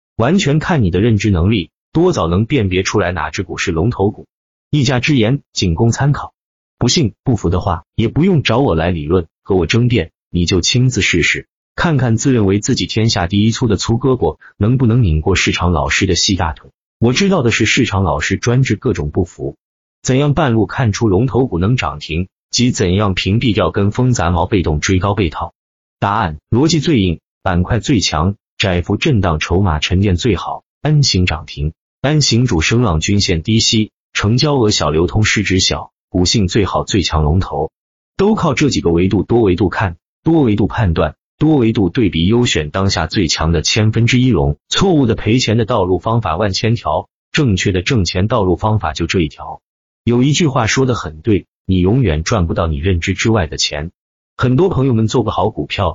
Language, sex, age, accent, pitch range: Chinese, male, 30-49, native, 90-120 Hz